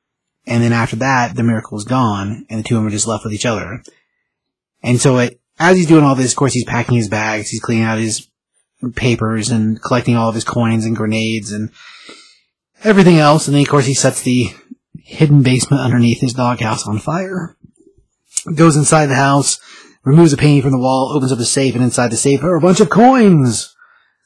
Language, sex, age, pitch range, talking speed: English, male, 30-49, 115-140 Hz, 215 wpm